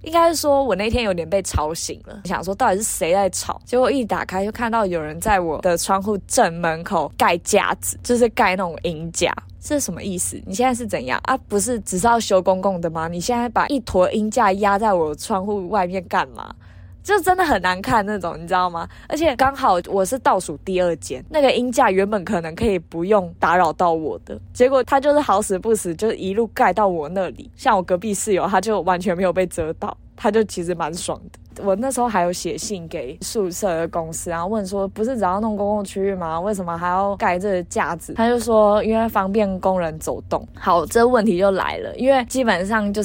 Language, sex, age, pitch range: Chinese, female, 20-39, 180-225 Hz